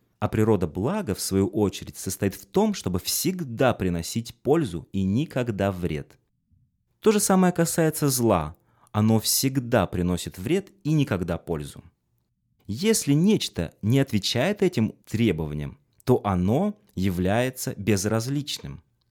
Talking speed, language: 120 wpm, Russian